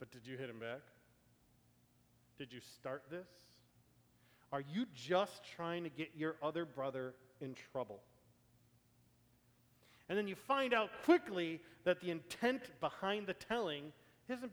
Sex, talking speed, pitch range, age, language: male, 140 wpm, 120-175 Hz, 40-59, English